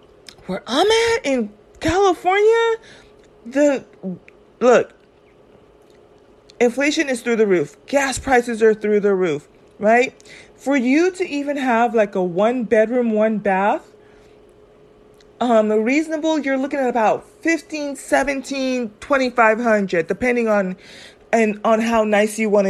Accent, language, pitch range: American, English, 205-275 Hz